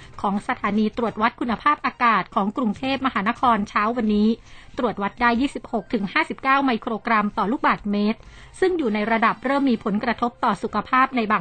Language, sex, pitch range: Thai, female, 210-245 Hz